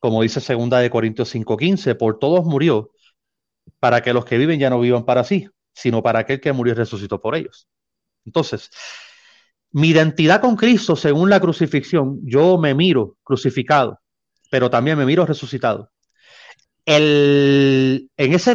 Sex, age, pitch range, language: male, 30-49, 125-180 Hz, Spanish